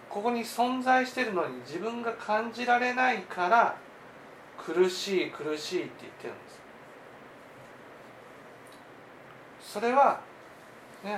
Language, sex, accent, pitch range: Japanese, male, native, 195-265 Hz